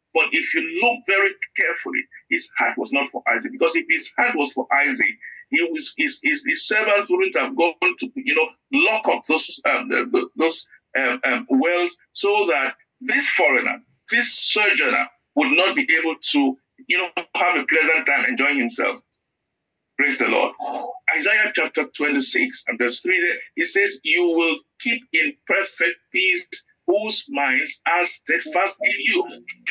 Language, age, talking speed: English, 50-69, 160 wpm